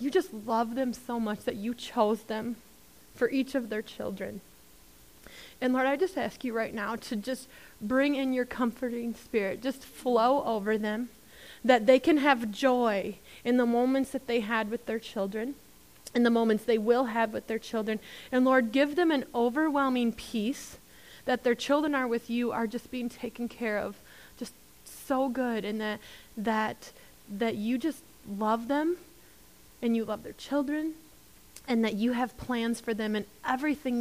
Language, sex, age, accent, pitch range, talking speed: English, female, 20-39, American, 210-255 Hz, 180 wpm